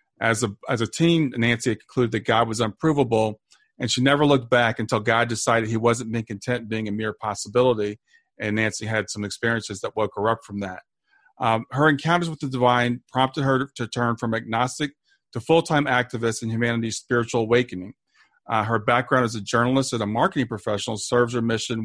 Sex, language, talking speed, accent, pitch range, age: male, English, 195 wpm, American, 110-130 Hz, 40-59